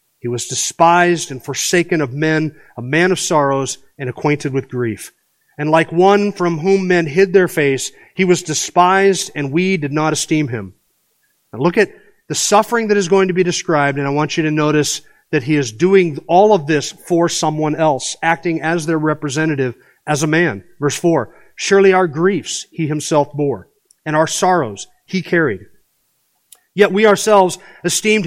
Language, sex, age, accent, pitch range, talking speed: English, male, 40-59, American, 155-210 Hz, 180 wpm